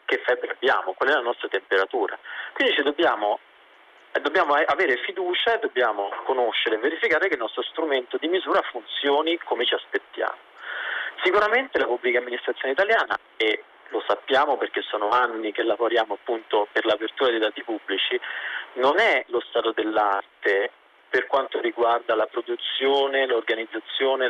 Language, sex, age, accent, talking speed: Italian, male, 40-59, native, 145 wpm